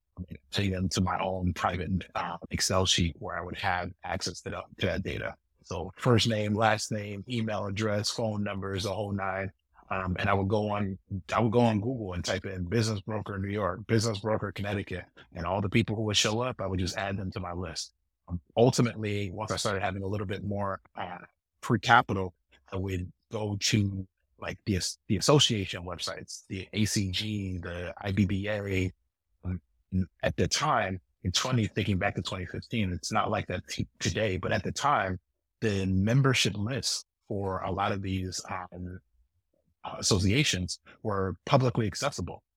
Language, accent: English, American